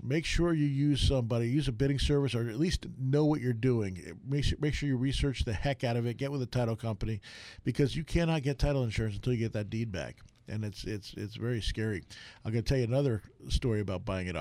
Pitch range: 105-130 Hz